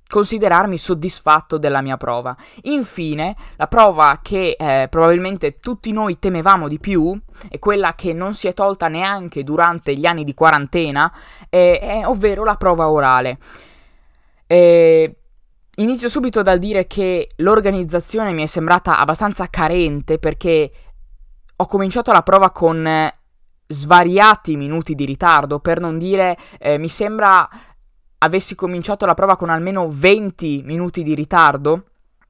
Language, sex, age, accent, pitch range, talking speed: Italian, female, 20-39, native, 150-190 Hz, 135 wpm